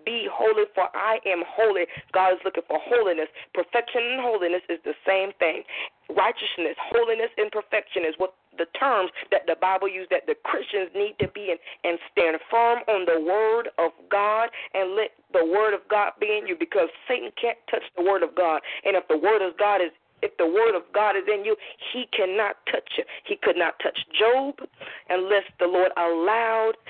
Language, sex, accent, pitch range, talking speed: English, female, American, 180-265 Hz, 200 wpm